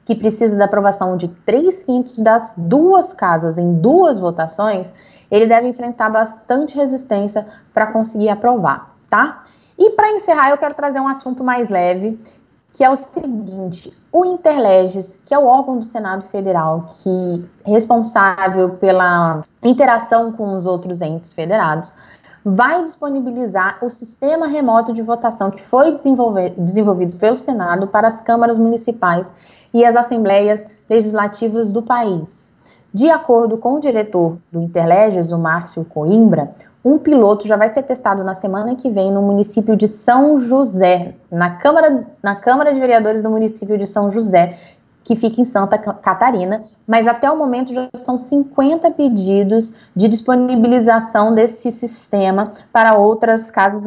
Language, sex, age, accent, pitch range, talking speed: Portuguese, female, 20-39, Brazilian, 195-250 Hz, 145 wpm